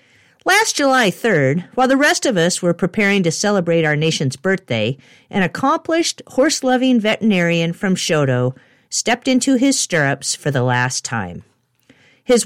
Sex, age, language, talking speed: female, 50-69, English, 145 wpm